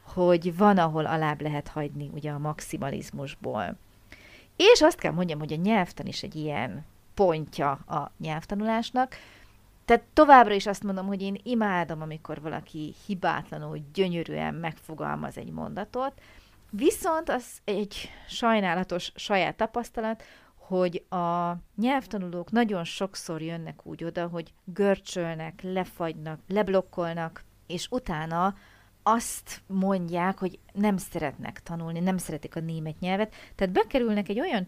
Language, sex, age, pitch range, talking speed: Hungarian, female, 40-59, 165-210 Hz, 125 wpm